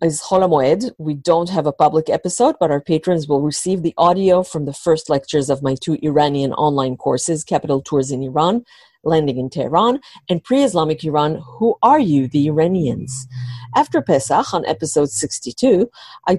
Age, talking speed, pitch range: 40-59, 170 wpm, 140-185 Hz